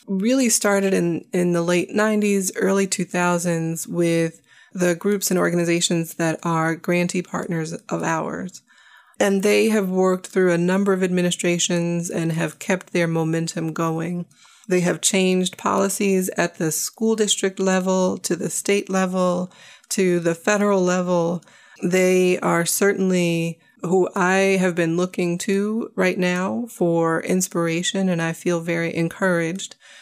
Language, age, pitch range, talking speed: English, 30-49, 170-195 Hz, 140 wpm